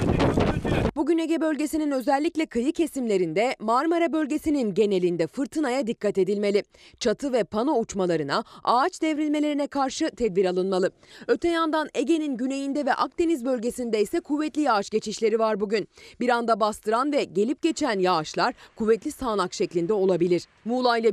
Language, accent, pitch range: Turkish, native, 200-295 Hz